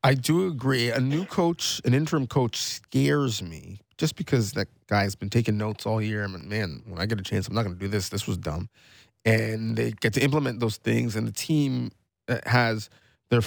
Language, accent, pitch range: English, American, 115-140 Hz